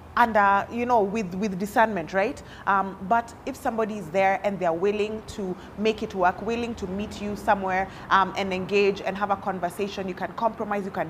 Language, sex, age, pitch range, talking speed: English, female, 30-49, 190-230 Hz, 205 wpm